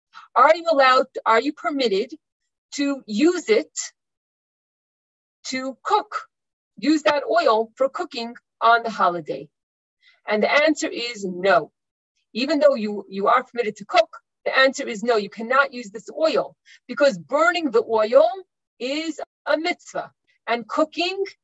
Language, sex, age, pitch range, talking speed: English, female, 40-59, 230-310 Hz, 140 wpm